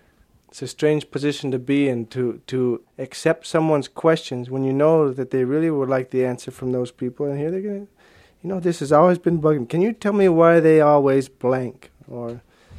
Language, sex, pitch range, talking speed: English, male, 130-155 Hz, 210 wpm